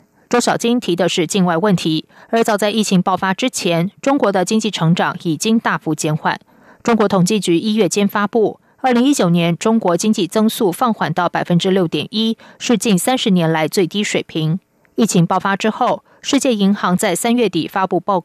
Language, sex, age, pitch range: French, female, 20-39, 175-230 Hz